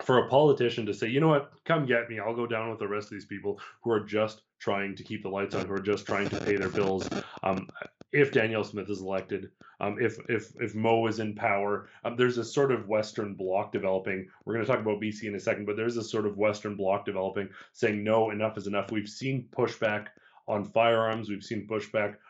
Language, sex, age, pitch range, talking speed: English, male, 30-49, 100-115 Hz, 235 wpm